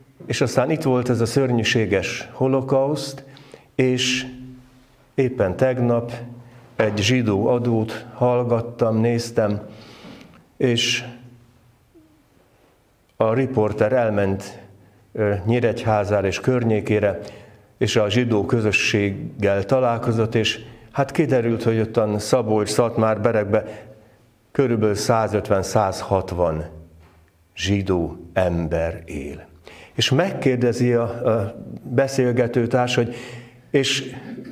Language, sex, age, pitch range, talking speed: Hungarian, male, 50-69, 100-125 Hz, 85 wpm